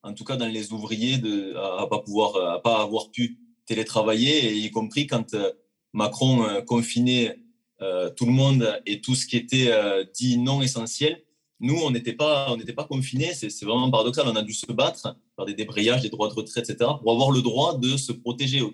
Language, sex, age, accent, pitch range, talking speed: French, male, 20-39, French, 115-145 Hz, 205 wpm